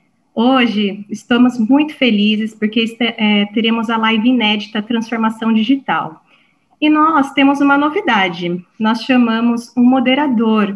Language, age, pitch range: Portuguese, 30-49, 205-250 Hz